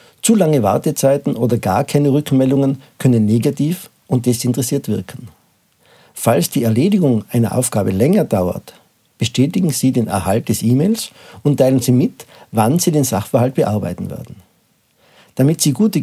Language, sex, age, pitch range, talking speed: German, male, 50-69, 115-150 Hz, 140 wpm